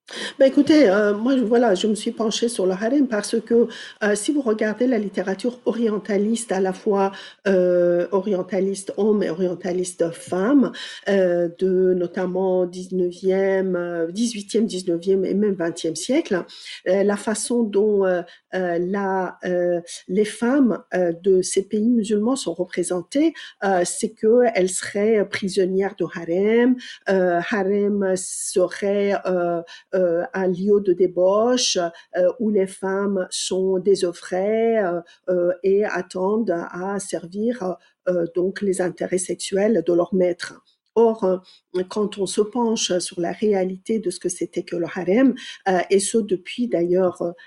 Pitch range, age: 180-215 Hz, 50-69